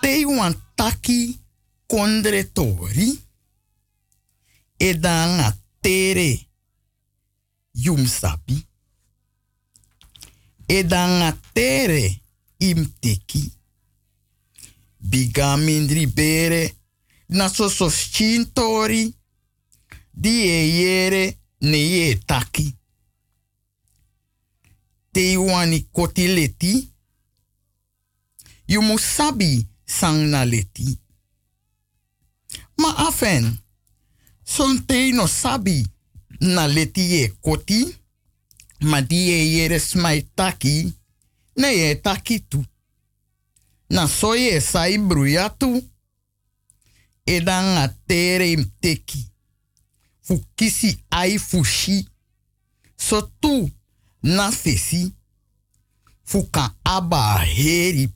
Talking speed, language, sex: 55 wpm, Dutch, male